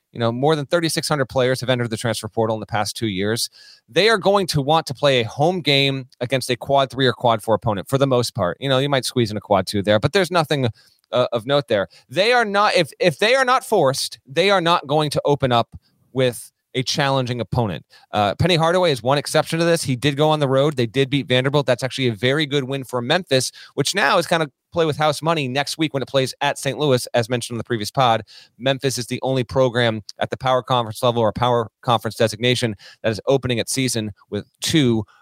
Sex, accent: male, American